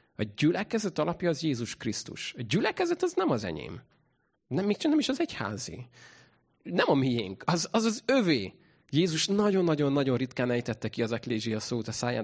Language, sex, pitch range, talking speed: Hungarian, male, 115-165 Hz, 175 wpm